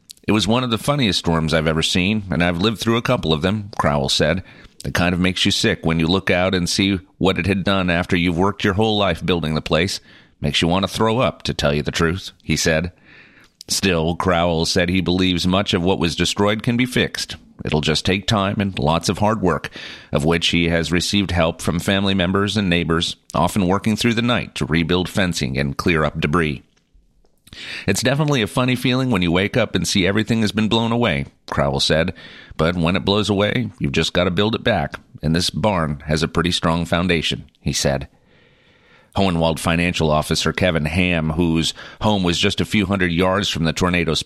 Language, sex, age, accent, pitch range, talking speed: English, male, 40-59, American, 80-100 Hz, 215 wpm